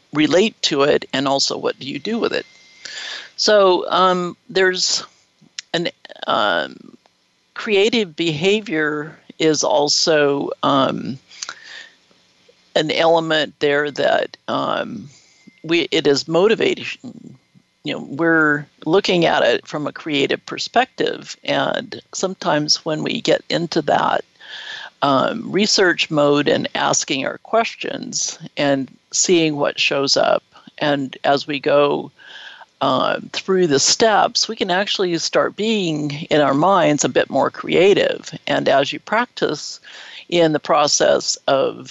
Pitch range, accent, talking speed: 150-205 Hz, American, 125 wpm